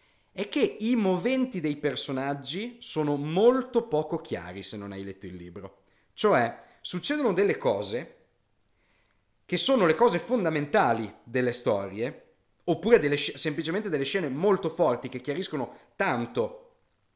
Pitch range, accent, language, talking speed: 120-200 Hz, native, Italian, 125 wpm